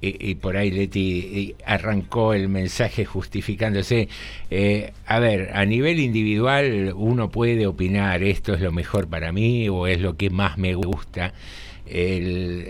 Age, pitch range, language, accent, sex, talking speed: 60-79, 95-115 Hz, Spanish, Argentinian, male, 150 wpm